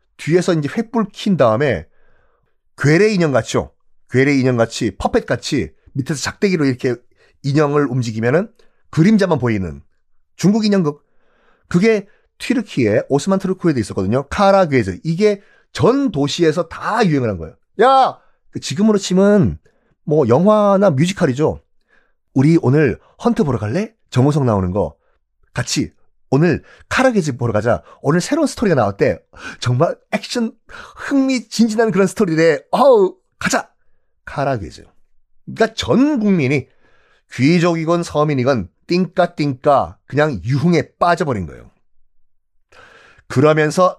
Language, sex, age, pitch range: Korean, male, 30-49, 125-200 Hz